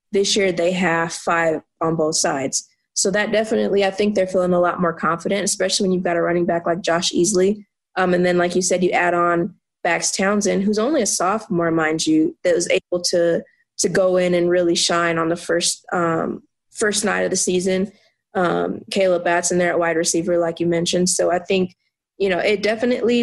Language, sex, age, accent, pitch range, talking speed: English, female, 20-39, American, 170-195 Hz, 210 wpm